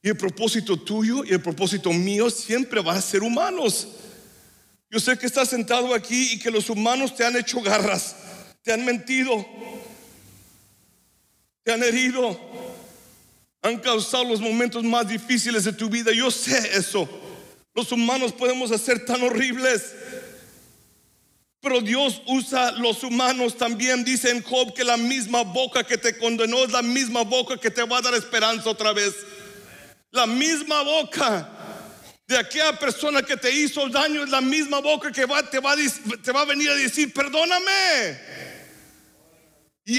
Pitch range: 215-260 Hz